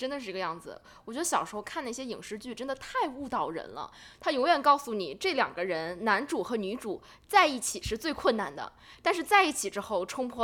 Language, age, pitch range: Chinese, 20-39, 195-290 Hz